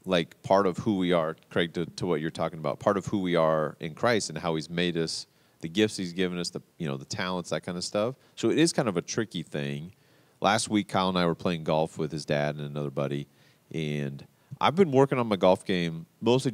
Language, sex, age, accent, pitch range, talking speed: English, male, 40-59, American, 80-105 Hz, 255 wpm